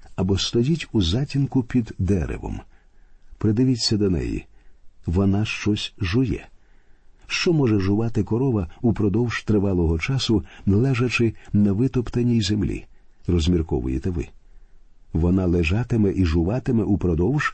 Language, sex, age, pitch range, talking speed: Ukrainian, male, 50-69, 90-120 Hz, 105 wpm